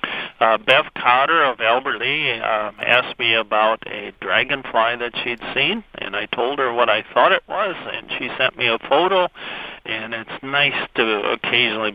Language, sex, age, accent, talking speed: English, male, 50-69, American, 175 wpm